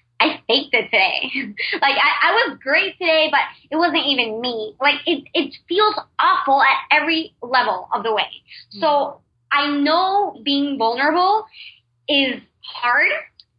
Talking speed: 145 wpm